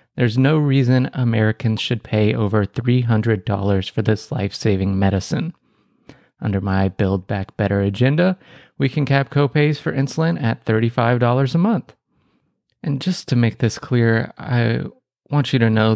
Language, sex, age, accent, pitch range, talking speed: English, male, 30-49, American, 100-130 Hz, 145 wpm